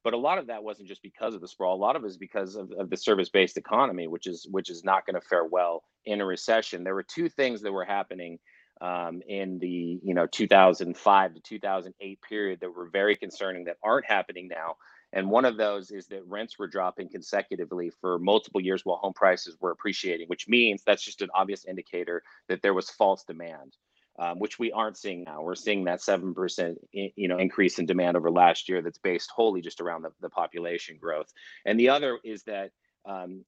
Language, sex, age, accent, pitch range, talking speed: English, male, 30-49, American, 90-105 Hz, 220 wpm